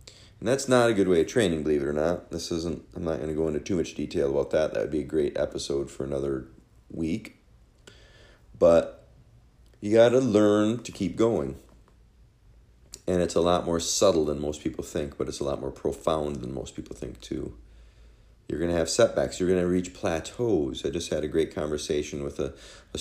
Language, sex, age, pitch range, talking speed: English, male, 40-59, 75-100 Hz, 215 wpm